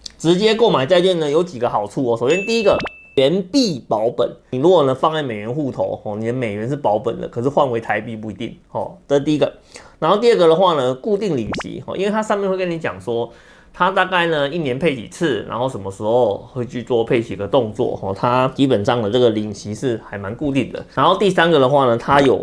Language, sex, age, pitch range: Chinese, male, 30-49, 115-180 Hz